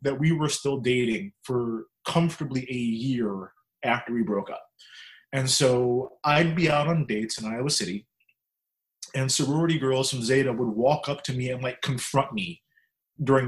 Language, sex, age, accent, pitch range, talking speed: English, male, 30-49, American, 125-155 Hz, 170 wpm